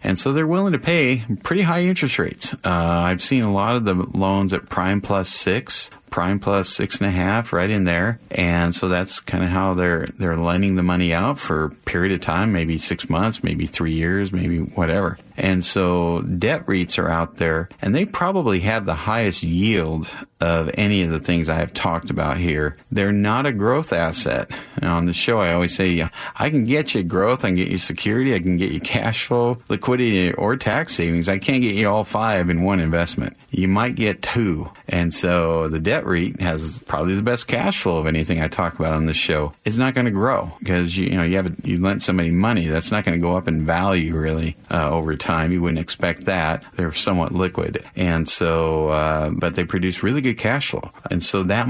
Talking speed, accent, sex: 225 wpm, American, male